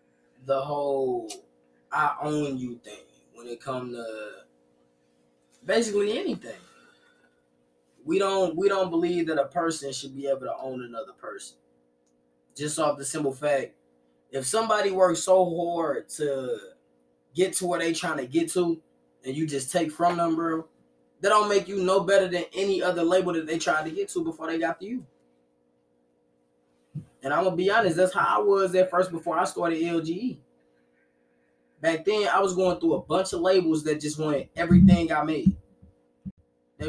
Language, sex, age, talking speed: English, male, 20-39, 170 wpm